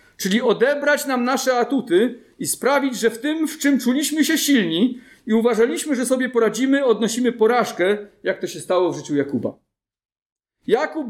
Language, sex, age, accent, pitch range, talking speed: Polish, male, 50-69, native, 185-265 Hz, 160 wpm